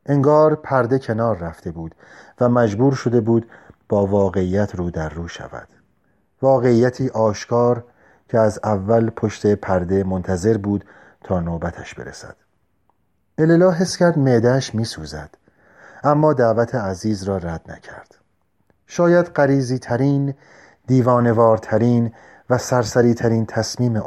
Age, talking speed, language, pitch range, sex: 40-59, 115 wpm, Persian, 100-135 Hz, male